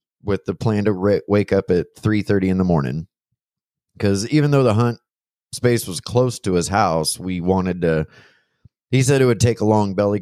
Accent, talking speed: American, 205 wpm